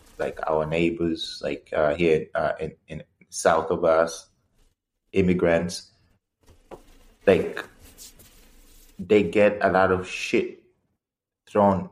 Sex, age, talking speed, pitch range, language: male, 30-49, 105 wpm, 90-100 Hz, English